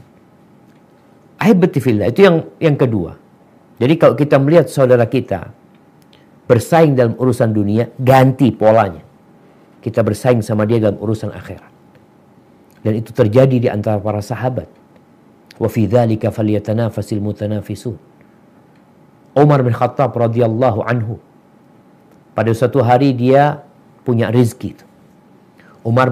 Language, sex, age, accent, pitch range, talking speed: Indonesian, male, 50-69, native, 110-135 Hz, 100 wpm